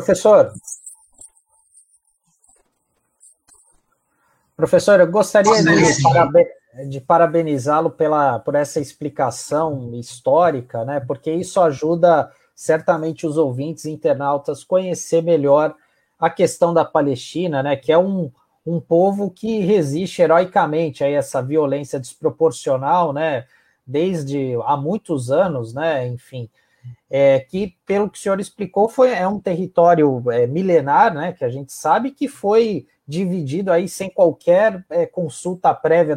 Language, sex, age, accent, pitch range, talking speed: Portuguese, male, 20-39, Brazilian, 145-185 Hz, 125 wpm